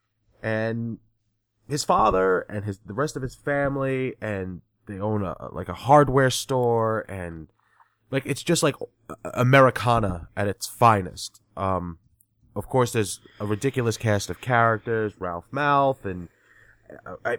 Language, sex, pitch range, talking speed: English, male, 105-120 Hz, 140 wpm